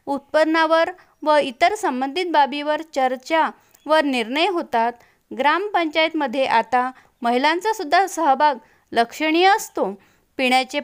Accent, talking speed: native, 95 wpm